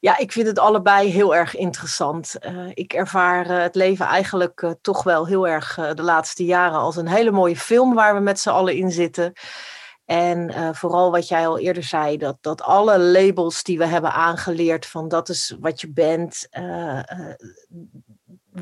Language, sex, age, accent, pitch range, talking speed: Dutch, female, 40-59, Dutch, 170-200 Hz, 195 wpm